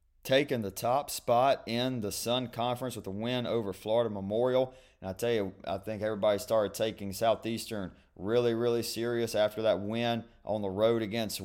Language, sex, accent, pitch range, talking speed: English, male, American, 95-115 Hz, 180 wpm